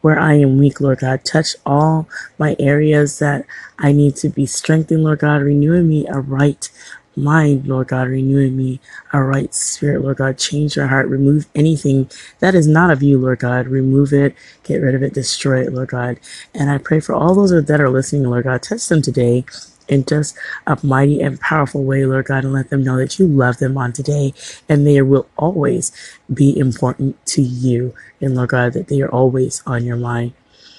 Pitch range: 135-150 Hz